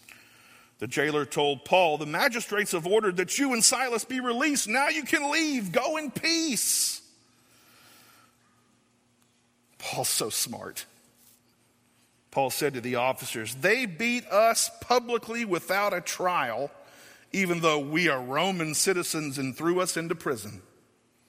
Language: English